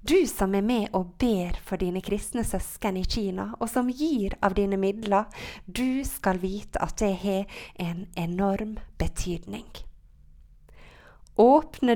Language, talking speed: English, 145 wpm